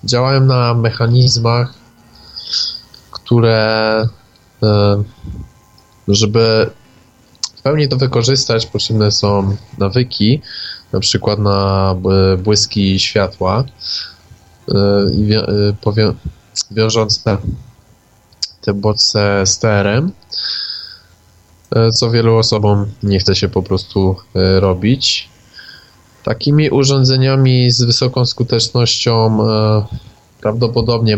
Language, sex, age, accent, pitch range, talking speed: Polish, male, 20-39, native, 100-120 Hz, 75 wpm